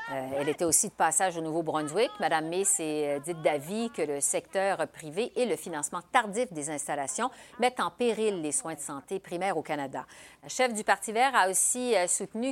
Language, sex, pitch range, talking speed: French, female, 160-215 Hz, 205 wpm